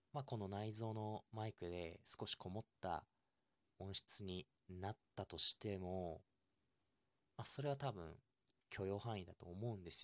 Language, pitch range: Japanese, 90-115 Hz